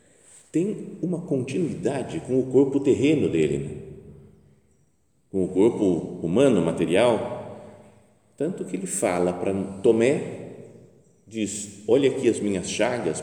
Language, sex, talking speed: Portuguese, male, 120 wpm